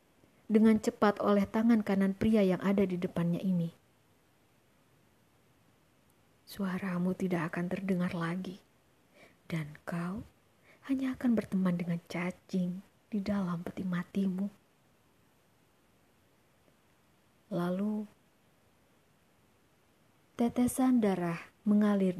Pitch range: 175-215 Hz